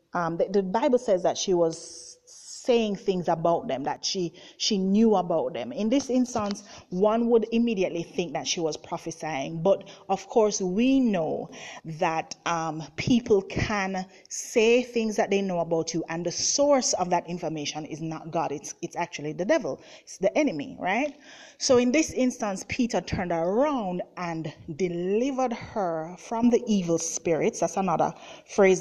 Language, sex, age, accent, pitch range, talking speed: English, female, 30-49, Nigerian, 165-220 Hz, 165 wpm